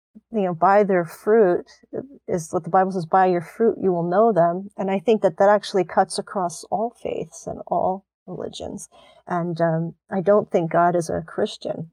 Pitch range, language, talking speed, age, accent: 180-210 Hz, English, 195 wpm, 40-59, American